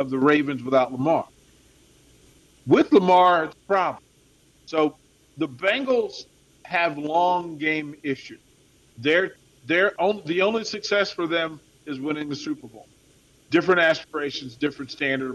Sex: male